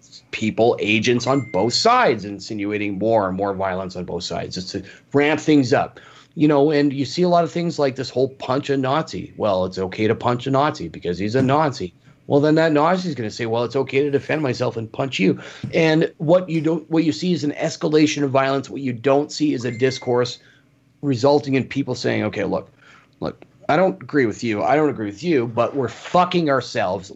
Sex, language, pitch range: male, English, 120-145 Hz